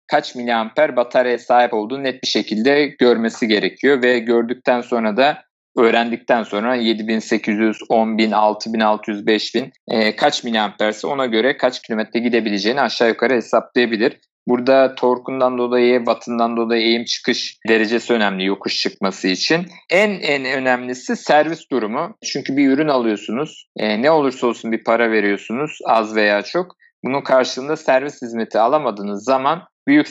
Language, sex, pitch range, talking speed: Turkish, male, 115-135 Hz, 140 wpm